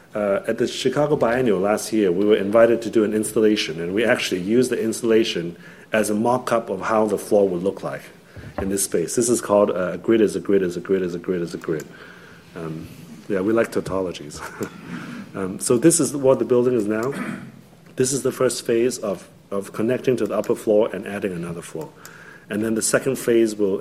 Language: English